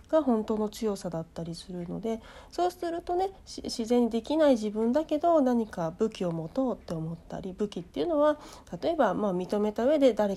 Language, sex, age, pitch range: Japanese, female, 40-59, 195-280 Hz